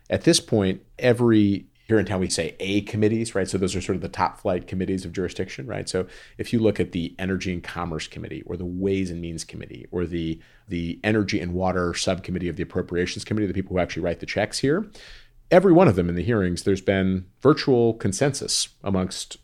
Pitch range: 85-105 Hz